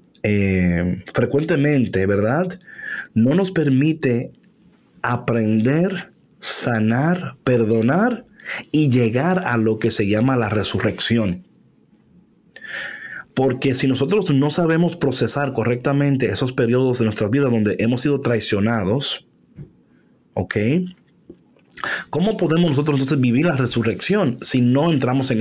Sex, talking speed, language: male, 110 wpm, Spanish